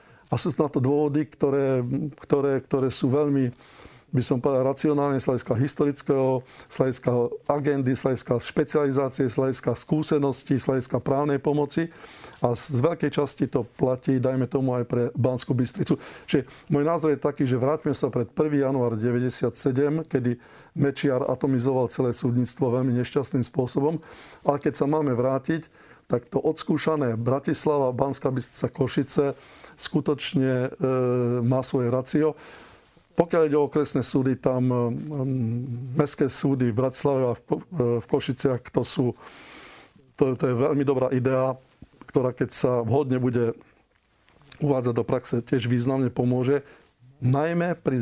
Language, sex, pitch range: Slovak, male, 125-145 Hz